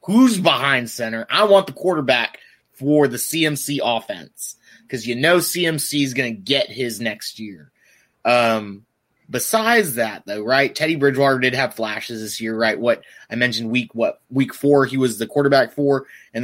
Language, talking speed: English, 170 wpm